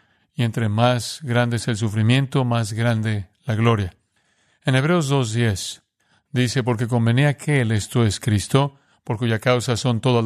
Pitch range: 115-135 Hz